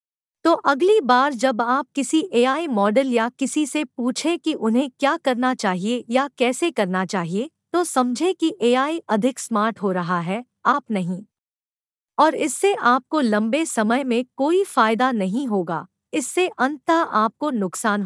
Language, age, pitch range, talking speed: Hindi, 50-69, 215-295 Hz, 155 wpm